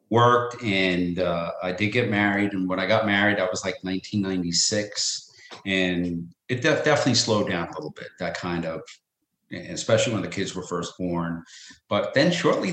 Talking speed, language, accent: 180 wpm, English, American